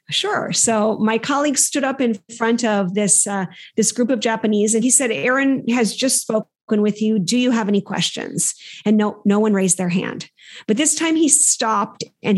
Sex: female